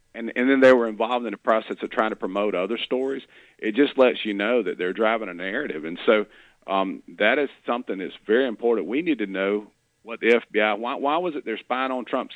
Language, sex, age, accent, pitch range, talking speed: English, male, 40-59, American, 105-130 Hz, 240 wpm